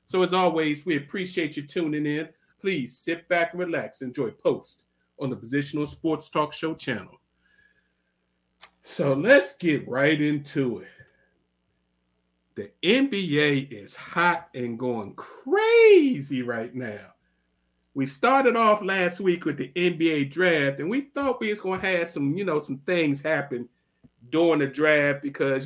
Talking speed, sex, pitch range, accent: 145 wpm, male, 130-175 Hz, American